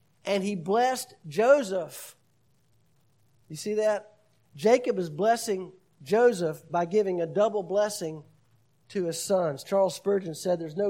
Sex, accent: male, American